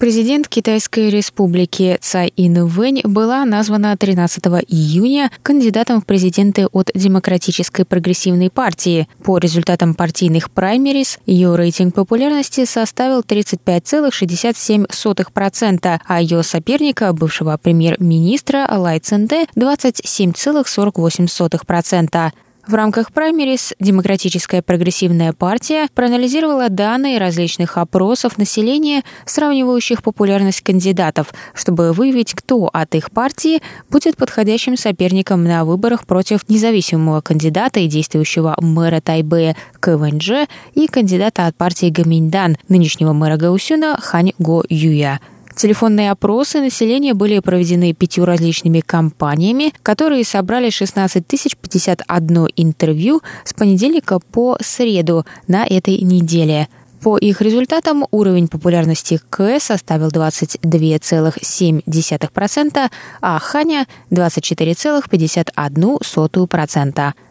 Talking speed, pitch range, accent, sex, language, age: 95 wpm, 170-235 Hz, native, female, Russian, 20-39